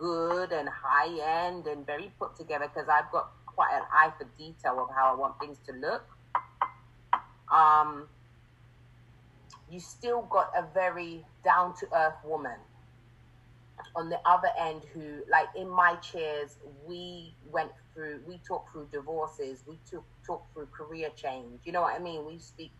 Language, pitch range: English, 130-170 Hz